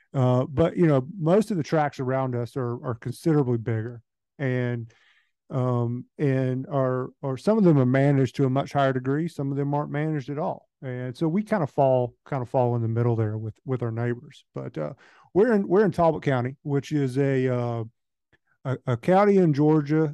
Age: 50-69